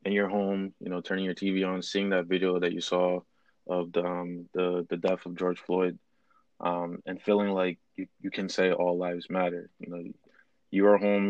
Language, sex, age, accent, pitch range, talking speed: English, male, 20-39, American, 90-100 Hz, 210 wpm